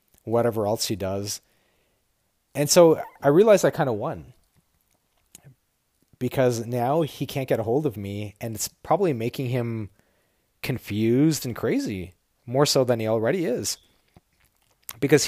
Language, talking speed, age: English, 140 wpm, 30-49